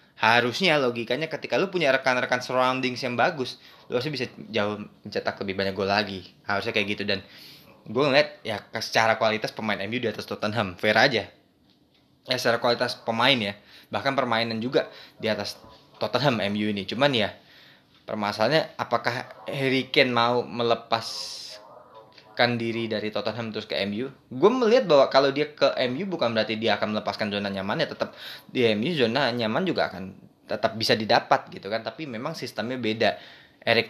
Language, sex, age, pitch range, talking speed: Indonesian, male, 20-39, 105-125 Hz, 165 wpm